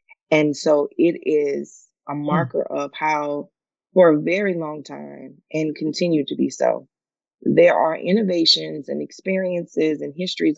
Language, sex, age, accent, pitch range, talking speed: English, female, 20-39, American, 145-175 Hz, 140 wpm